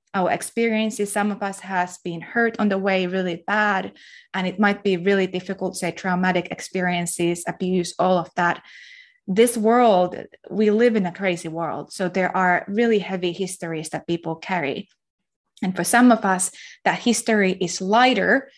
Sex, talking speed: female, 170 wpm